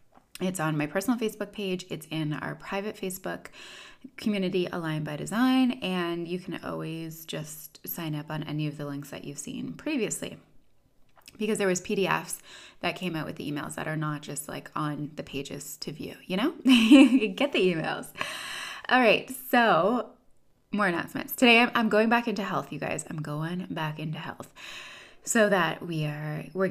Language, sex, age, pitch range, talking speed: English, female, 20-39, 155-205 Hz, 180 wpm